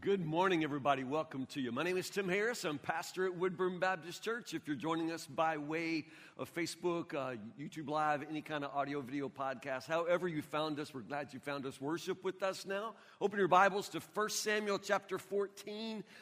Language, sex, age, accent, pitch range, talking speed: English, male, 50-69, American, 150-195 Hz, 205 wpm